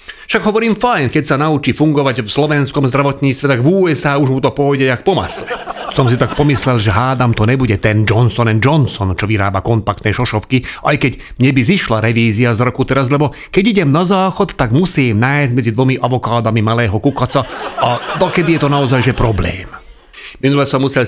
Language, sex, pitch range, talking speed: Slovak, male, 110-145 Hz, 180 wpm